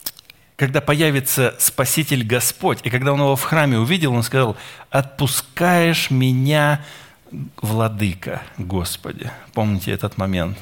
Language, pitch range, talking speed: Russian, 115-160 Hz, 115 wpm